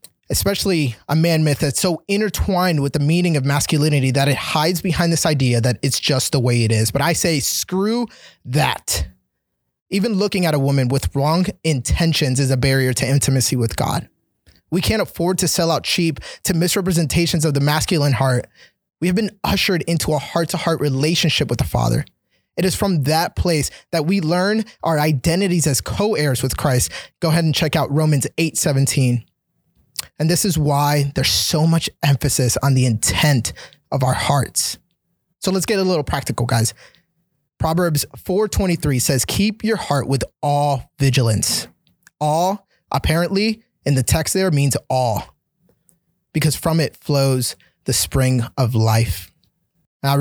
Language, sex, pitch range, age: English, male, 135-170 Hz, 20-39